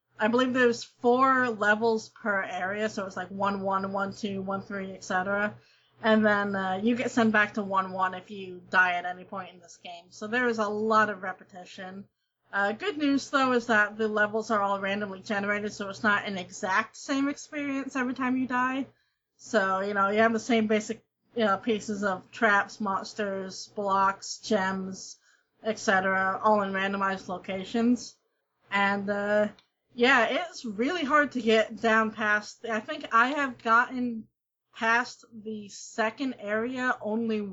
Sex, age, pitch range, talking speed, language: female, 30-49, 195-235 Hz, 175 wpm, English